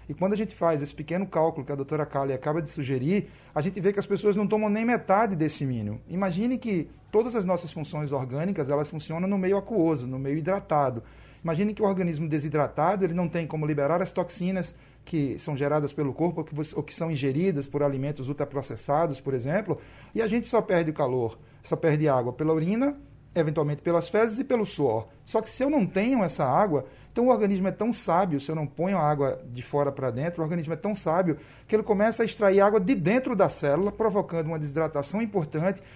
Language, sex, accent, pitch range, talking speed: Portuguese, male, Brazilian, 145-205 Hz, 215 wpm